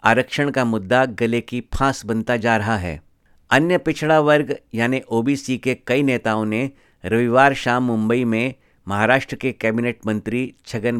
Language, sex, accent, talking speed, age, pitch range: Hindi, male, native, 155 wpm, 50-69, 110-130 Hz